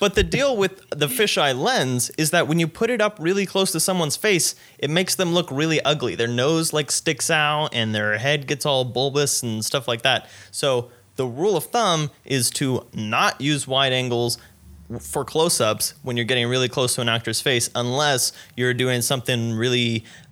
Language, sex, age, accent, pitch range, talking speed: English, male, 20-39, American, 115-145 Hz, 200 wpm